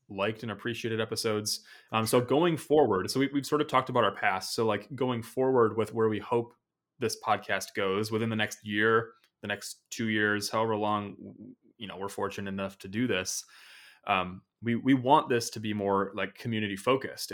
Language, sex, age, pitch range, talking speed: English, male, 20-39, 100-120 Hz, 195 wpm